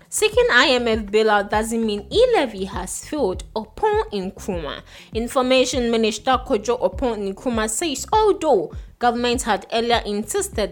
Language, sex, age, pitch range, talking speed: English, female, 20-39, 215-275 Hz, 125 wpm